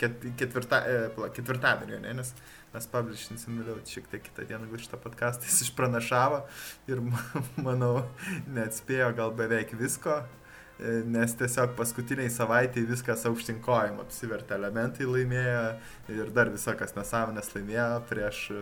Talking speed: 115 wpm